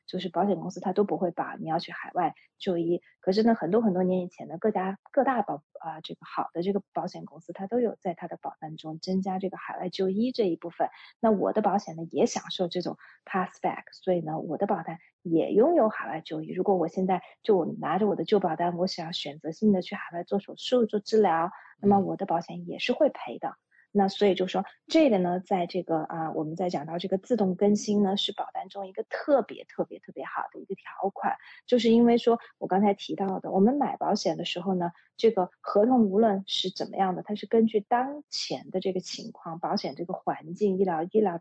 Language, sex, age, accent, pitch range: Chinese, female, 20-39, native, 175-215 Hz